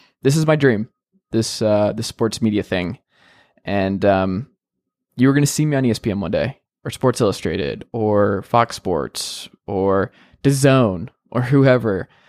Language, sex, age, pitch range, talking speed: English, male, 20-39, 100-120 Hz, 155 wpm